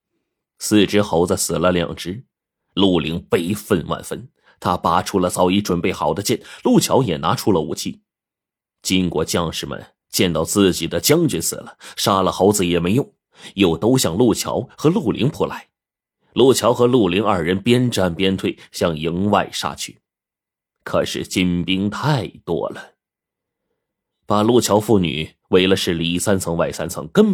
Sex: male